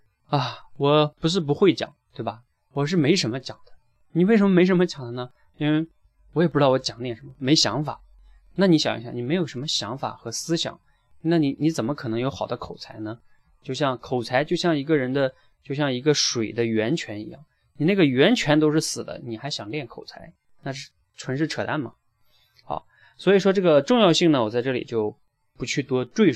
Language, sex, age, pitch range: Chinese, male, 20-39, 120-160 Hz